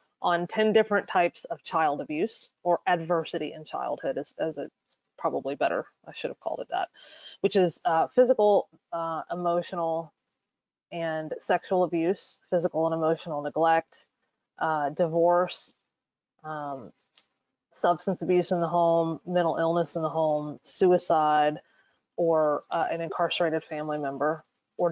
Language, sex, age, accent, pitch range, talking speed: English, female, 20-39, American, 160-195 Hz, 135 wpm